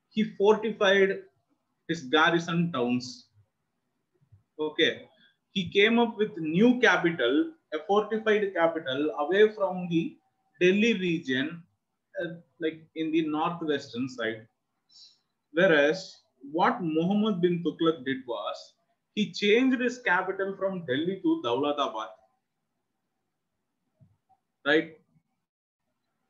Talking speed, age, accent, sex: 95 wpm, 30-49, Indian, male